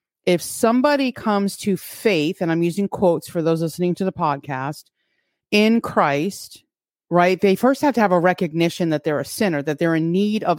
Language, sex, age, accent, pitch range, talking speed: English, female, 30-49, American, 165-210 Hz, 195 wpm